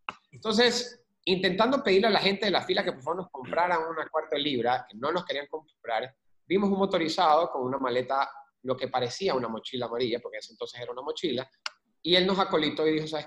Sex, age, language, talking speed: male, 30-49, Spanish, 225 wpm